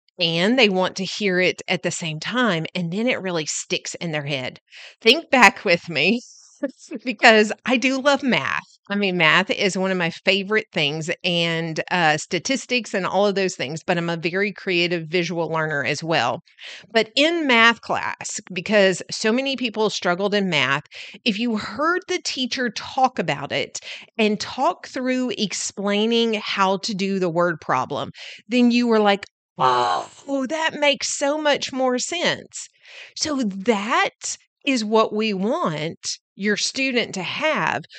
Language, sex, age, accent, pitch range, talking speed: English, female, 40-59, American, 180-250 Hz, 165 wpm